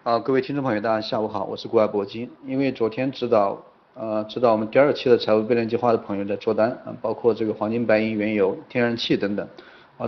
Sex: male